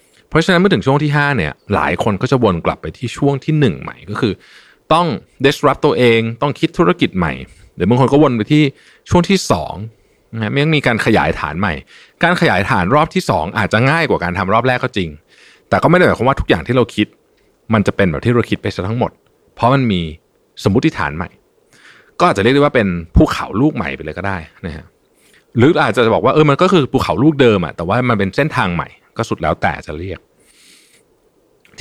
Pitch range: 95-145 Hz